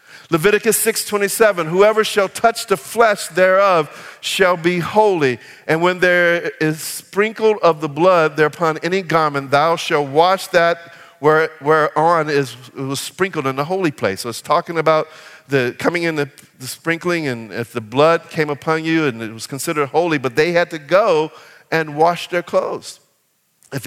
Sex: male